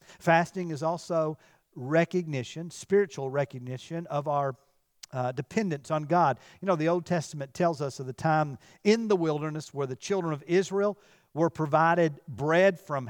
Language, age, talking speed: English, 50-69, 155 wpm